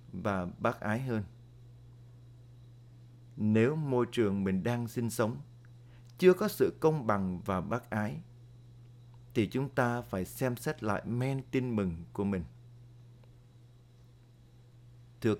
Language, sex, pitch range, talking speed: Vietnamese, male, 110-120 Hz, 125 wpm